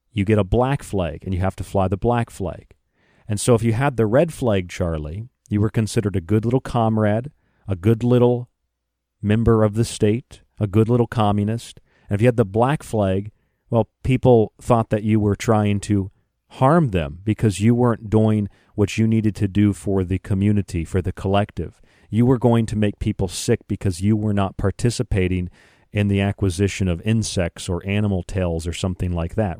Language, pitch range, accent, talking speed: English, 95-115 Hz, American, 195 wpm